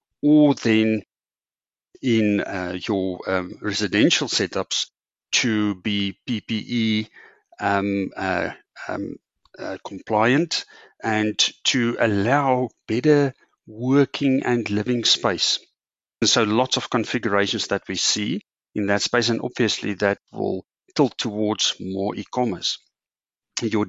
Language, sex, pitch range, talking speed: English, male, 100-120 Hz, 110 wpm